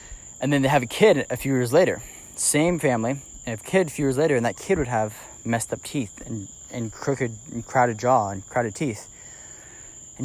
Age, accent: 20-39, American